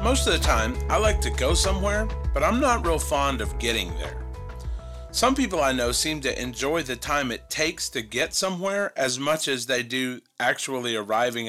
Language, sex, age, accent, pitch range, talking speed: English, male, 40-59, American, 120-185 Hz, 200 wpm